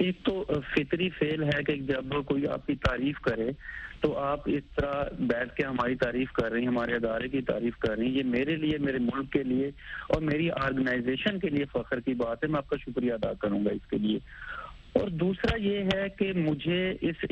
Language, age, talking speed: Urdu, 30-49, 220 wpm